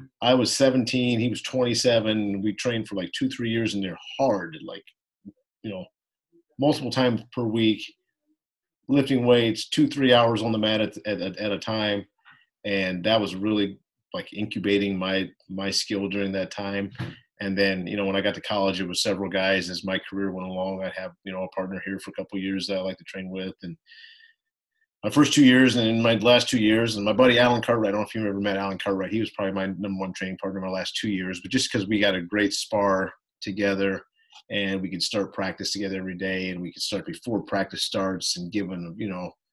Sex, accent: male, American